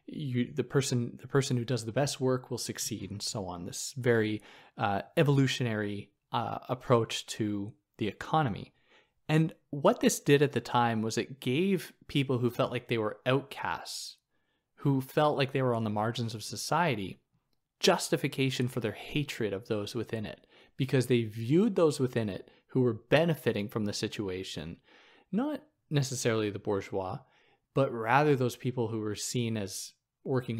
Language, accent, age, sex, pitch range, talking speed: English, American, 20-39, male, 110-135 Hz, 165 wpm